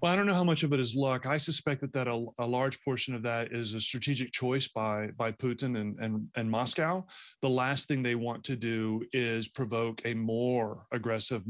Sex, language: male, English